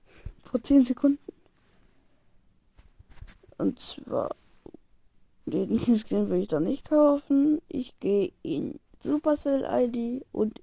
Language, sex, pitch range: German, female, 205-265 Hz